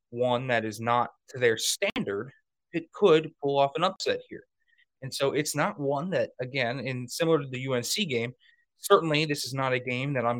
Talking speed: 200 wpm